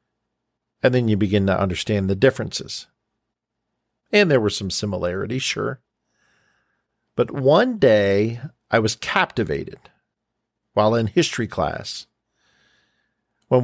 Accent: American